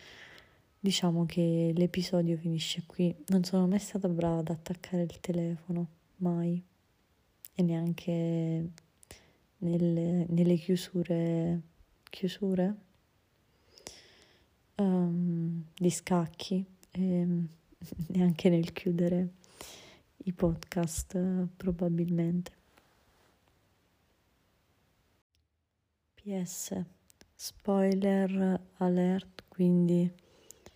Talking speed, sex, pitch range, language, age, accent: 70 wpm, female, 170-185 Hz, Italian, 20-39, native